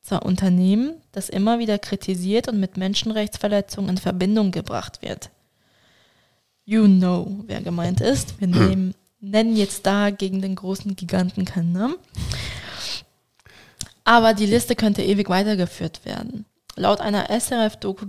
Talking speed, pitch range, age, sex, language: 125 wpm, 190-215 Hz, 20-39, female, German